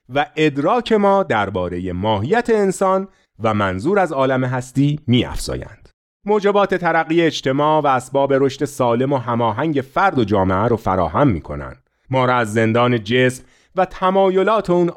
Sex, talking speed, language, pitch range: male, 140 wpm, Persian, 115-175 Hz